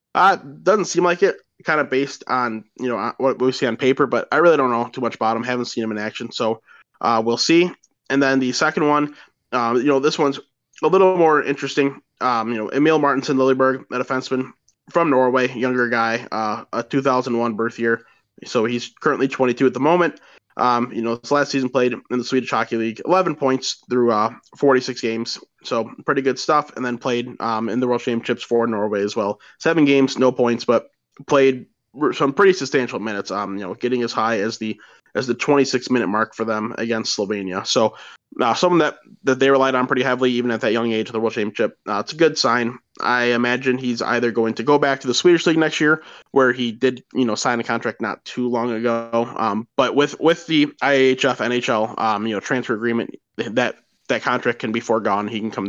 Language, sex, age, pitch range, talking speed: English, male, 20-39, 115-135 Hz, 220 wpm